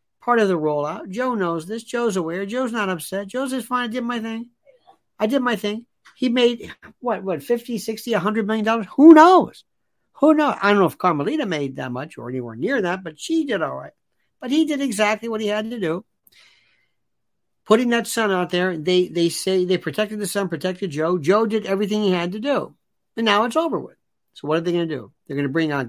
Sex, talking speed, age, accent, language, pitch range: male, 230 wpm, 60-79, American, English, 155-225 Hz